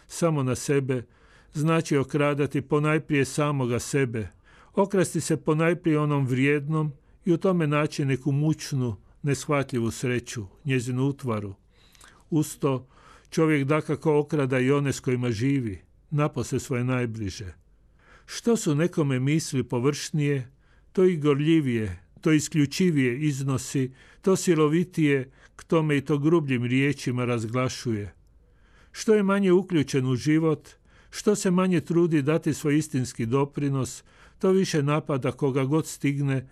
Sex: male